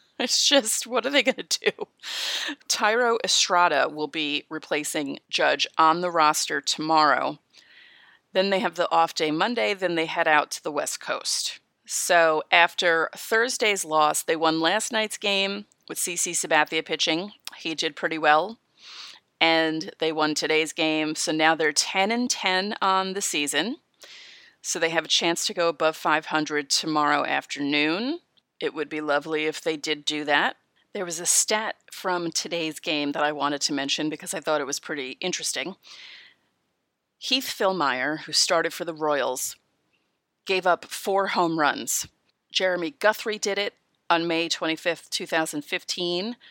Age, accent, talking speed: 30-49, American, 160 wpm